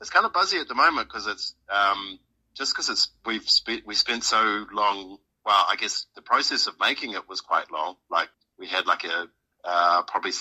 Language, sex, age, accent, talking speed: English, male, 40-59, Australian, 215 wpm